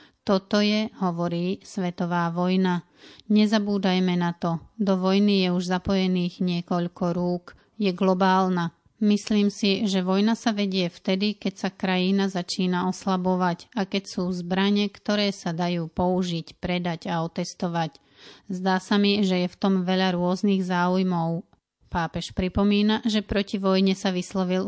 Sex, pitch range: female, 180-200 Hz